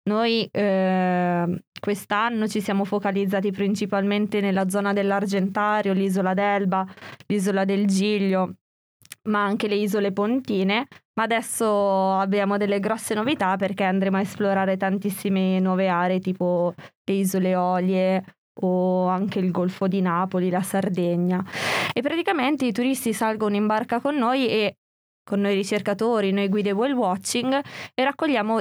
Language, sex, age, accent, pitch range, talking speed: Italian, female, 20-39, native, 195-215 Hz, 135 wpm